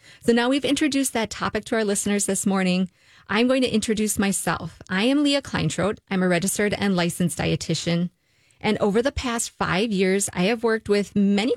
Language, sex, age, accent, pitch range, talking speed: English, female, 20-39, American, 175-210 Hz, 190 wpm